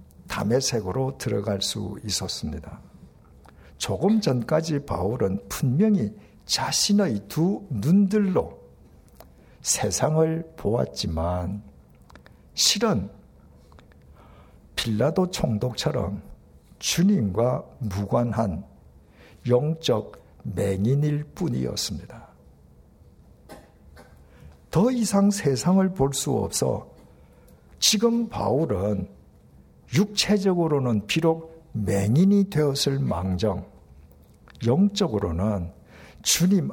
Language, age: Korean, 60-79